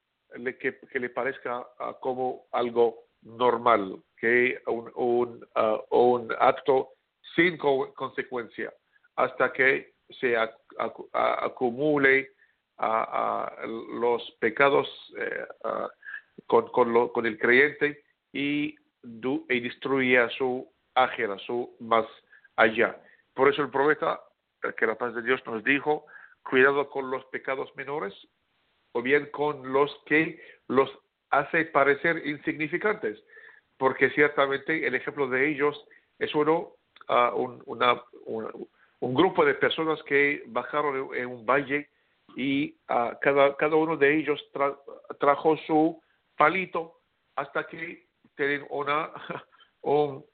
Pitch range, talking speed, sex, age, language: 130-155 Hz, 130 wpm, male, 50-69, English